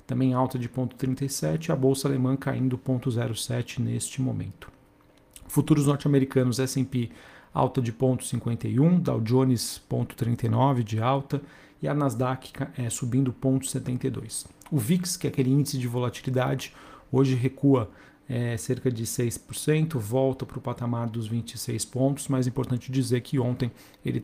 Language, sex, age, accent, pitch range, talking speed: Portuguese, male, 40-59, Brazilian, 120-135 Hz, 130 wpm